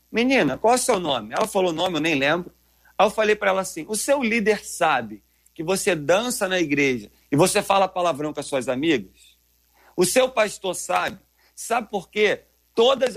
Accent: Brazilian